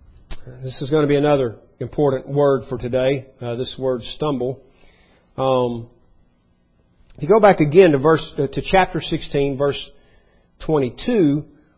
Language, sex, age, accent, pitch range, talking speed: English, male, 40-59, American, 135-185 Hz, 130 wpm